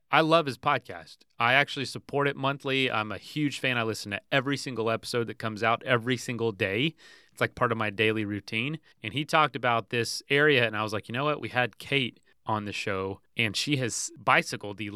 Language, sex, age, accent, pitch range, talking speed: English, male, 30-49, American, 110-140 Hz, 225 wpm